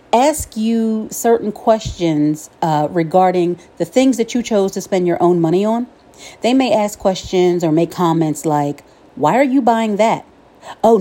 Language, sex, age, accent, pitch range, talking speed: English, female, 40-59, American, 170-235 Hz, 170 wpm